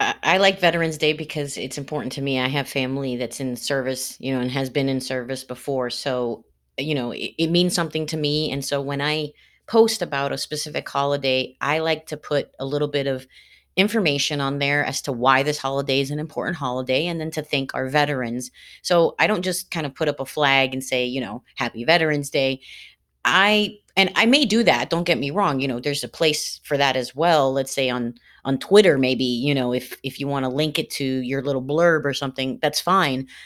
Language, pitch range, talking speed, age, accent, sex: English, 135-165 Hz, 225 wpm, 30-49, American, female